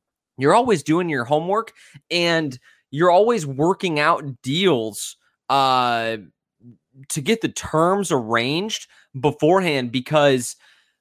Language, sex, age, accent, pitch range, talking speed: English, male, 20-39, American, 115-150 Hz, 105 wpm